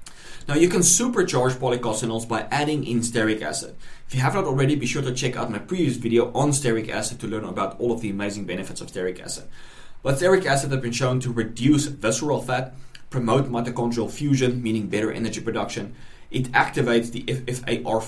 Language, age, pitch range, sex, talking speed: English, 20-39, 115-135 Hz, male, 190 wpm